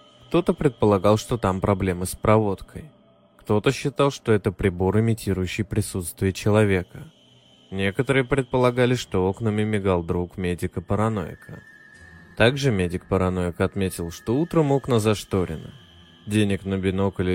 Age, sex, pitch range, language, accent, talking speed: 20-39, male, 90-110 Hz, Russian, native, 110 wpm